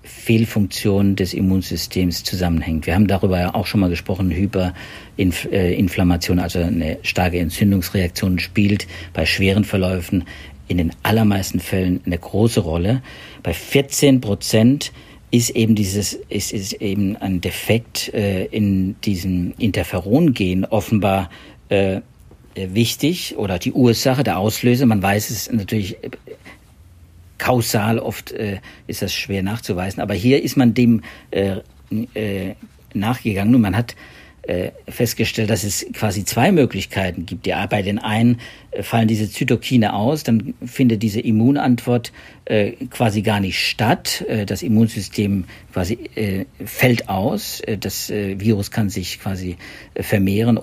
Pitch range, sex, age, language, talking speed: 95-115 Hz, male, 50-69, German, 130 wpm